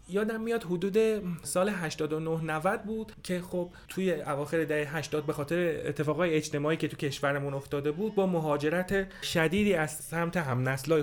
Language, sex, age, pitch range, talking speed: Persian, male, 30-49, 135-175 Hz, 150 wpm